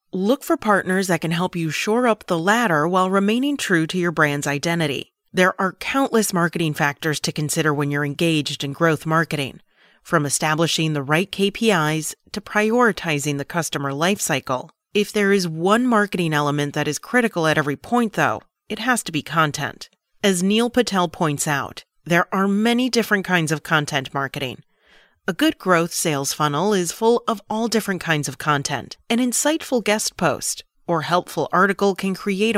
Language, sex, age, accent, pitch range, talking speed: English, female, 30-49, American, 155-205 Hz, 175 wpm